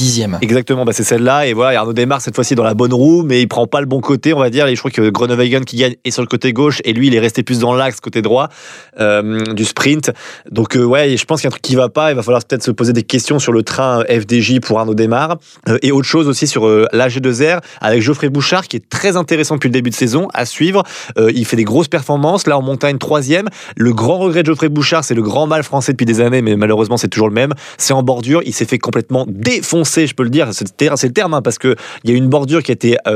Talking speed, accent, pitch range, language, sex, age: 280 wpm, French, 115-145 Hz, French, male, 20-39